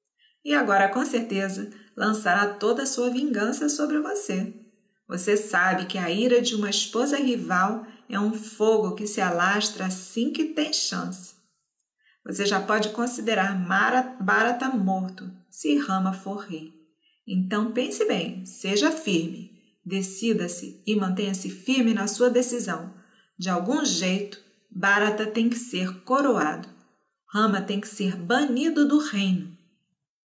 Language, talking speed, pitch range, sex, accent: Portuguese, 135 wpm, 185-235 Hz, female, Brazilian